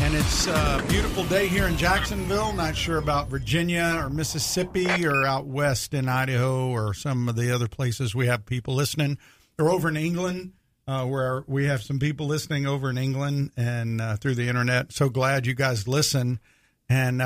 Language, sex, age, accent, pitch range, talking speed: English, male, 50-69, American, 125-150 Hz, 190 wpm